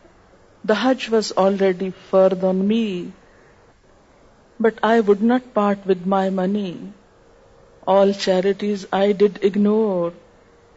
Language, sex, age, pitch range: Urdu, female, 50-69, 190-220 Hz